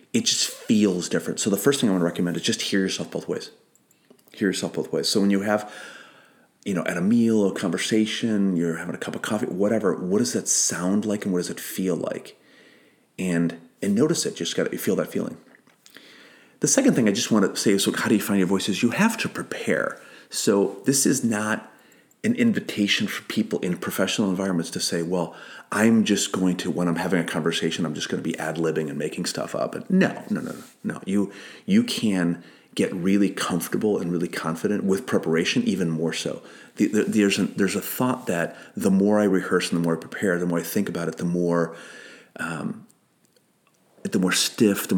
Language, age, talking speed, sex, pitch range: English, 30-49, 220 wpm, male, 85-105 Hz